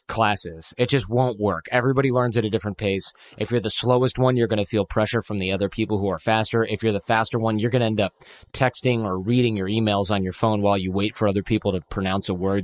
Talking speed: 265 wpm